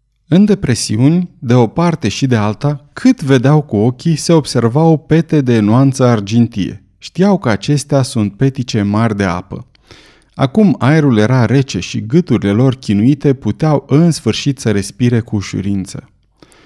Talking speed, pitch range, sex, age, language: 150 wpm, 105-145 Hz, male, 30-49, Romanian